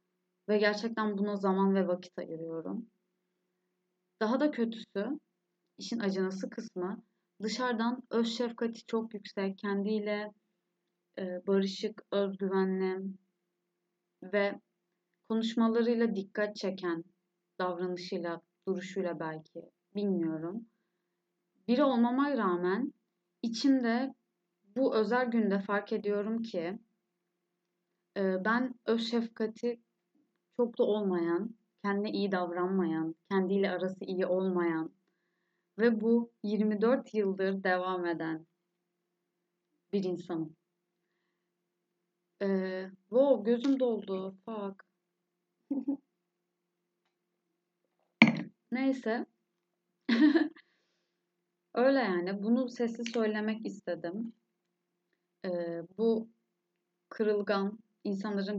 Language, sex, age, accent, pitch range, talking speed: Turkish, female, 30-49, native, 180-220 Hz, 75 wpm